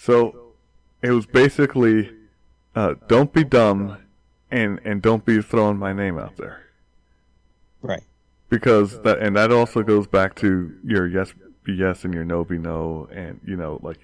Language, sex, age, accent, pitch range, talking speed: English, male, 20-39, American, 90-120 Hz, 165 wpm